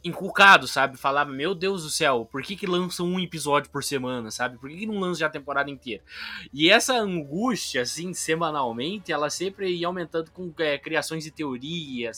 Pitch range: 120-180 Hz